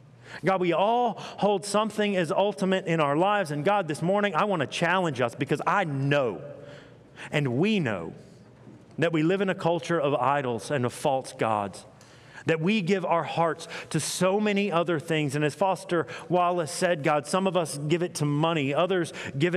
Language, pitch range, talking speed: English, 135-175 Hz, 190 wpm